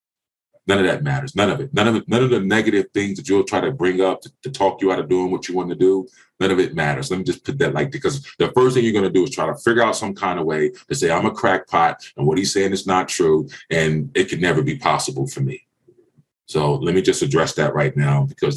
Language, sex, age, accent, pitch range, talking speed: English, male, 30-49, American, 75-100 Hz, 290 wpm